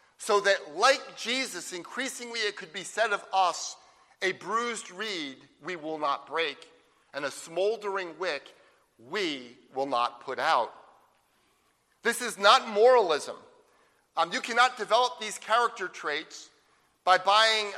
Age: 40-59